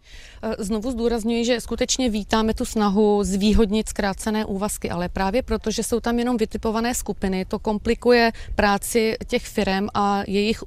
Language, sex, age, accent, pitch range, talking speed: Czech, female, 30-49, native, 200-230 Hz, 140 wpm